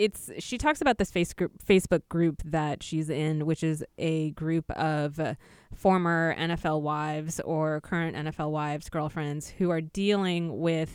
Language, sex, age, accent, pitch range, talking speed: English, female, 20-39, American, 155-185 Hz, 165 wpm